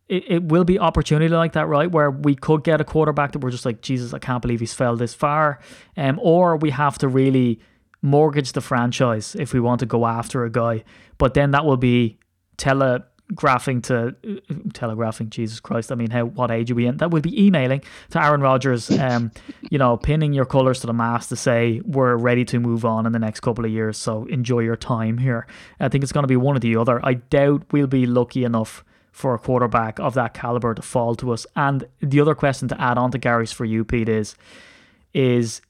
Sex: male